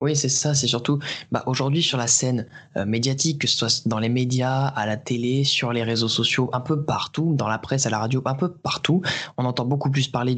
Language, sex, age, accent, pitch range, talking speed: French, male, 20-39, French, 120-145 Hz, 245 wpm